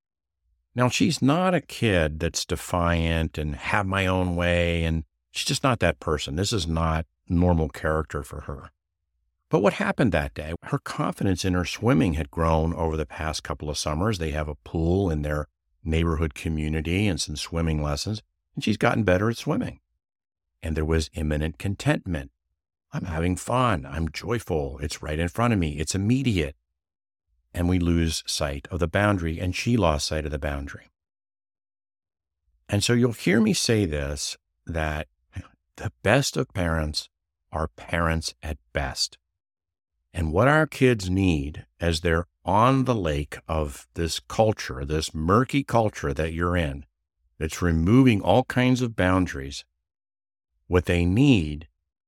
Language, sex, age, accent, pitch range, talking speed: English, male, 50-69, American, 75-100 Hz, 160 wpm